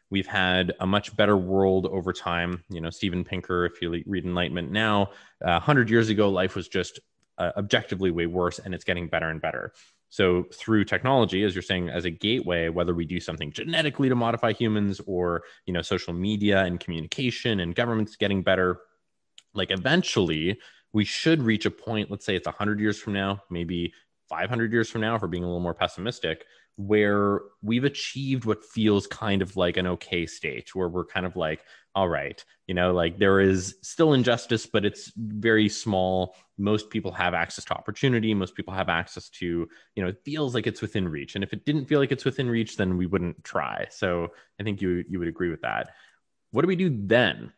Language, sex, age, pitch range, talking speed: English, male, 20-39, 90-110 Hz, 205 wpm